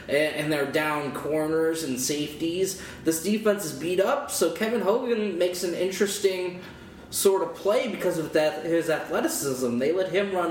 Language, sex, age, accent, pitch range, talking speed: English, male, 20-39, American, 145-180 Hz, 165 wpm